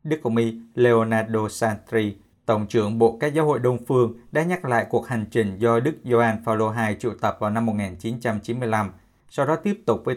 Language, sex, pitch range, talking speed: Vietnamese, male, 115-140 Hz, 200 wpm